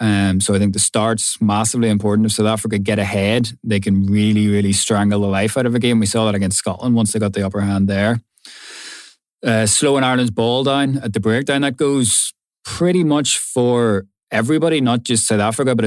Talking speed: 210 wpm